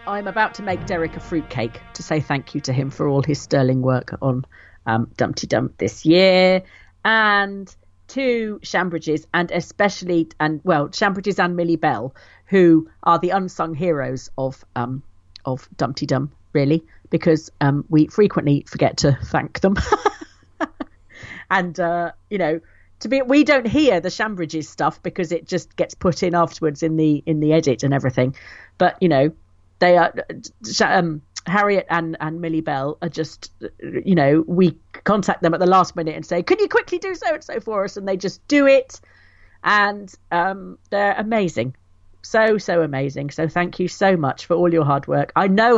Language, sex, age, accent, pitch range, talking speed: English, female, 40-59, British, 140-190 Hz, 180 wpm